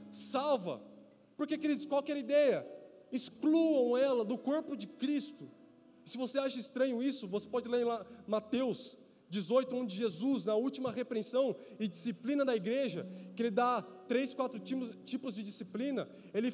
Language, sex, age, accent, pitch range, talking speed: Portuguese, male, 20-39, Brazilian, 225-275 Hz, 150 wpm